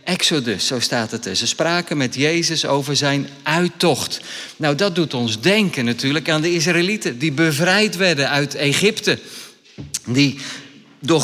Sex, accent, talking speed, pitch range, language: male, Dutch, 150 wpm, 155-200 Hz, Dutch